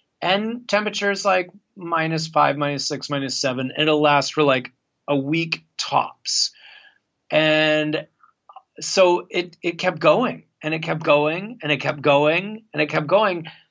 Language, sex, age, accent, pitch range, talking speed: English, male, 30-49, American, 140-180 Hz, 150 wpm